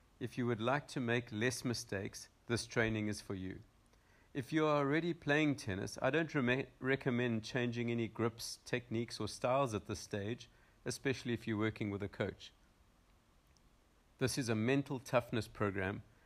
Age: 50-69